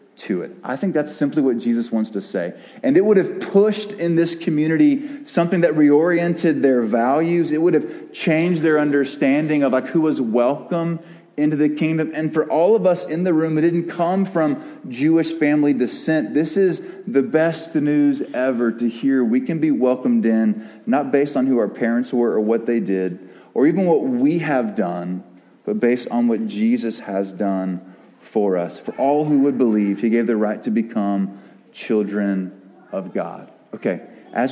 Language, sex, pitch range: English, male, 120-165 Hz